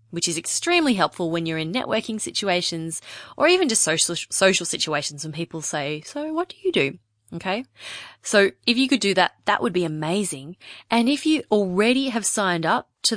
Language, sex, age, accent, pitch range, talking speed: English, female, 20-39, Australian, 160-220 Hz, 190 wpm